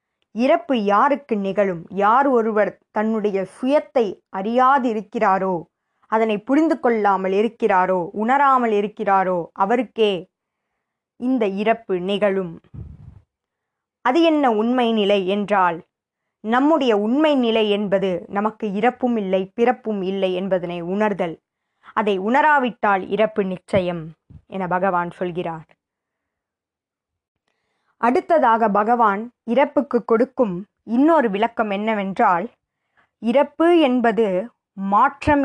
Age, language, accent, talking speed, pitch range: 20-39, Tamil, native, 85 wpm, 200-255 Hz